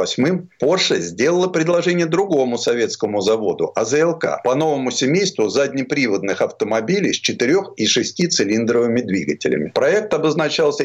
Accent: native